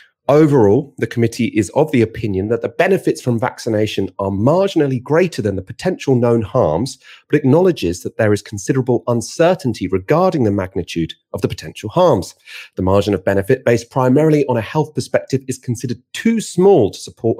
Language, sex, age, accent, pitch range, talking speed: English, male, 30-49, British, 95-130 Hz, 170 wpm